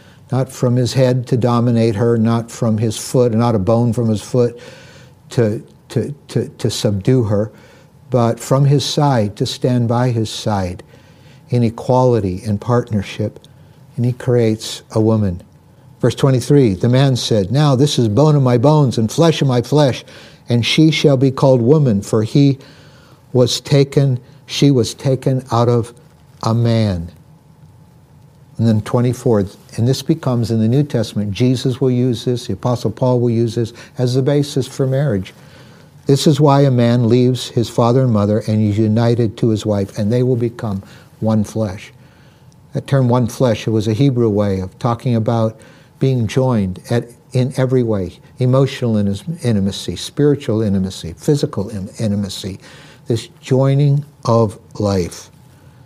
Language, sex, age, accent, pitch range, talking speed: English, male, 60-79, American, 110-140 Hz, 160 wpm